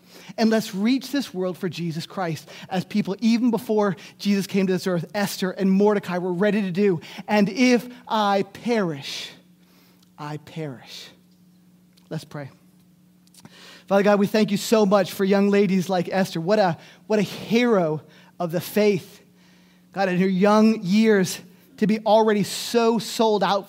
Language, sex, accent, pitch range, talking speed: English, male, American, 175-200 Hz, 160 wpm